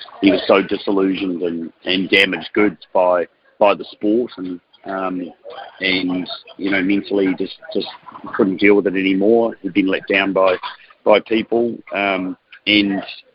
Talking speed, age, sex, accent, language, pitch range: 155 wpm, 40-59, male, Australian, English, 95-110 Hz